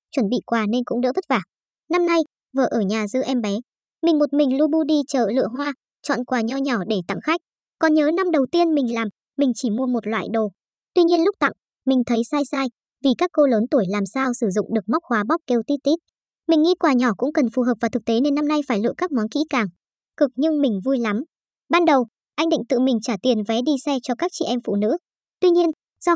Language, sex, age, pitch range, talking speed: Vietnamese, male, 20-39, 235-305 Hz, 260 wpm